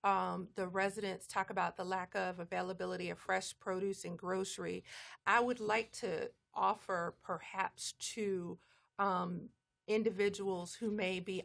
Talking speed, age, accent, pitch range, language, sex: 135 wpm, 40-59, American, 185-215 Hz, English, female